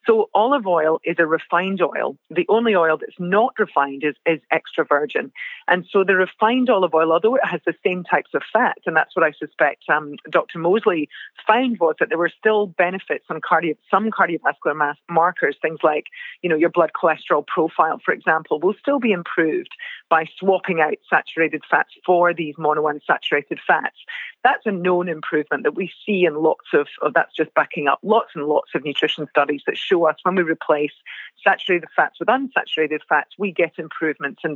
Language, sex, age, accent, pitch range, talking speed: English, female, 40-59, British, 160-225 Hz, 185 wpm